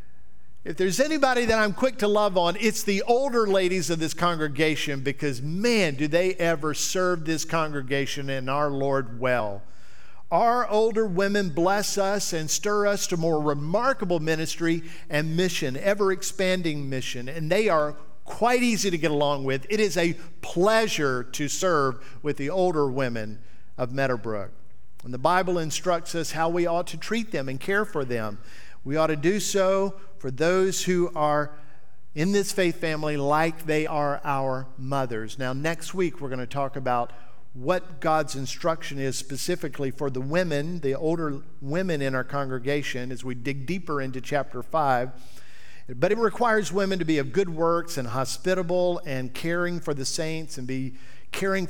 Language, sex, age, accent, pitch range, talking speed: English, male, 50-69, American, 135-180 Hz, 170 wpm